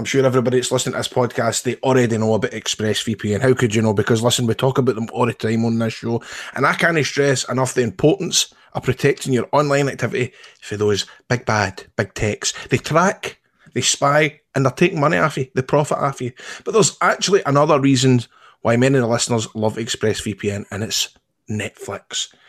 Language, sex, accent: English, male, British